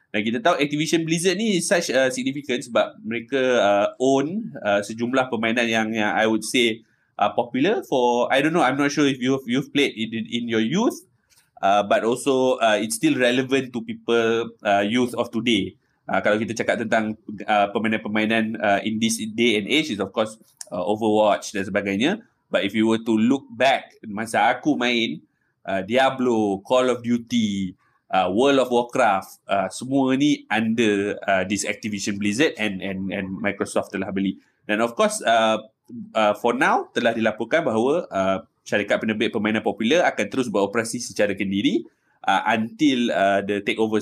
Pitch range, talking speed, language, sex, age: 105-135 Hz, 175 wpm, Malay, male, 20-39